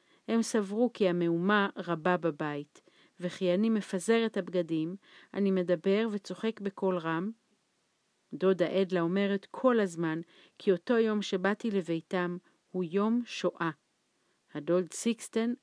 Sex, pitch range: female, 170-220 Hz